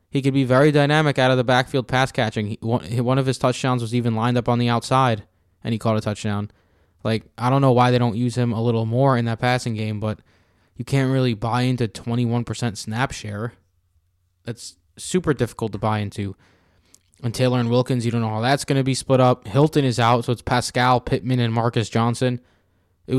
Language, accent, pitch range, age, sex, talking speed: English, American, 110-130 Hz, 20-39, male, 215 wpm